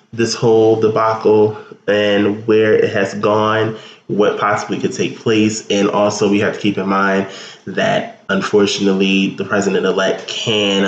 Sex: male